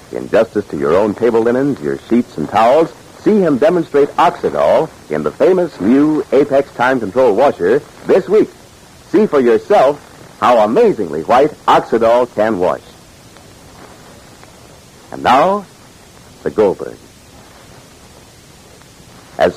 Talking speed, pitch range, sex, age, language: 120 wpm, 100-140 Hz, male, 60-79, English